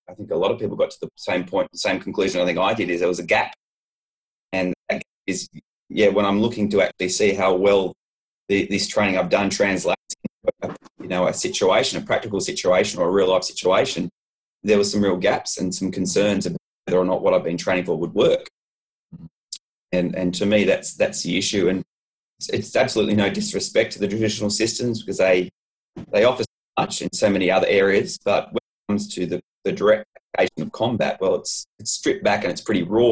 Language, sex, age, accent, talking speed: English, male, 20-39, Australian, 220 wpm